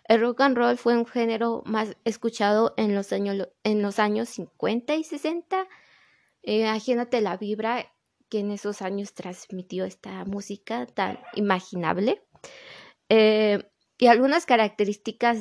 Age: 20-39